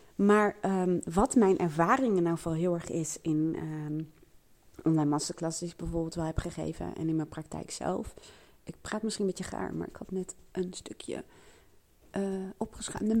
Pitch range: 150-190 Hz